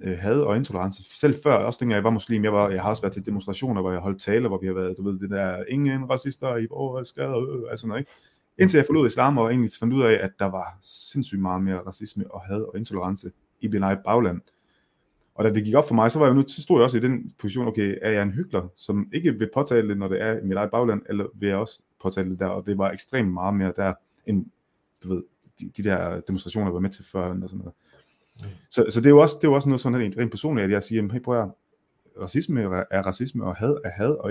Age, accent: 30-49, native